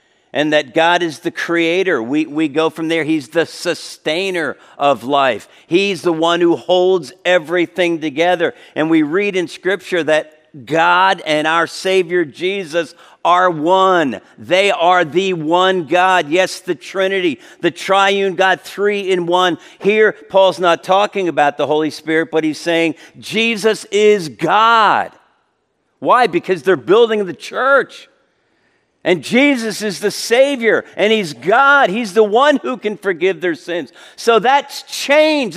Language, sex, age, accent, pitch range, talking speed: English, male, 50-69, American, 160-220 Hz, 150 wpm